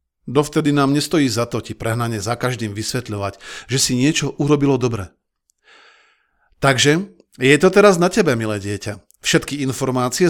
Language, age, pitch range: Slovak, 40-59, 115-160 Hz